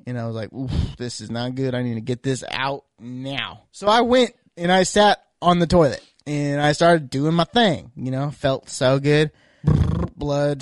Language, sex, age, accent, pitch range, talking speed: English, male, 20-39, American, 135-185 Hz, 205 wpm